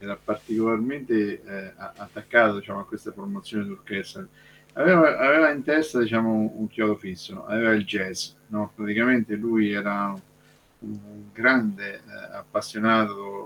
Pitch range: 105-120 Hz